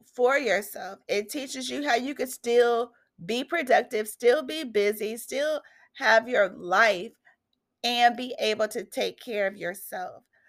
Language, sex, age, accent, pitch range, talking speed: English, female, 30-49, American, 195-250 Hz, 150 wpm